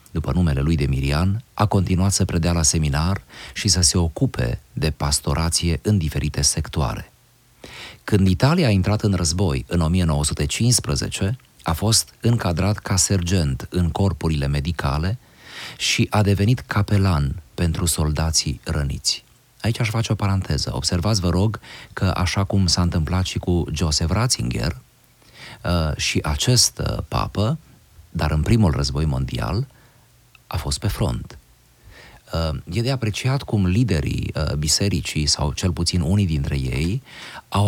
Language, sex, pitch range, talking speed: Romanian, male, 80-110 Hz, 135 wpm